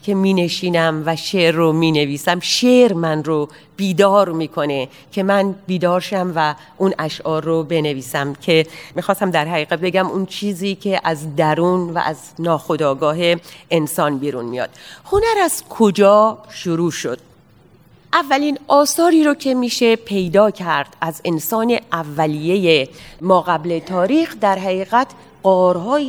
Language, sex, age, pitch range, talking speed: Persian, female, 40-59, 165-230 Hz, 135 wpm